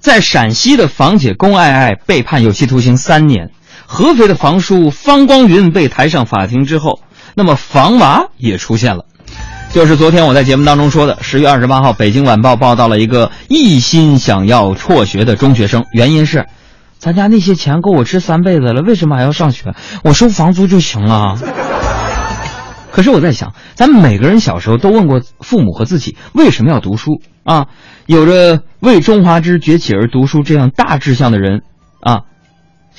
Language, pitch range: Chinese, 120-175 Hz